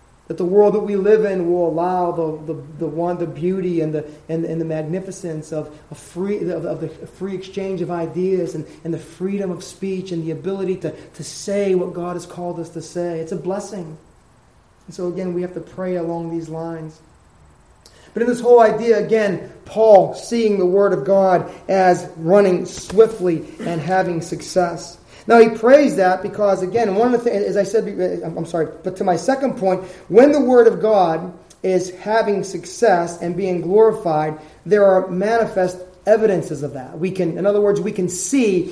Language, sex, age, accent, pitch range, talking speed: English, male, 30-49, American, 170-205 Hz, 190 wpm